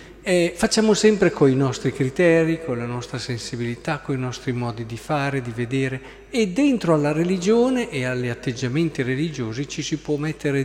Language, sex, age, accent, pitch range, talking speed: Italian, male, 40-59, native, 125-165 Hz, 175 wpm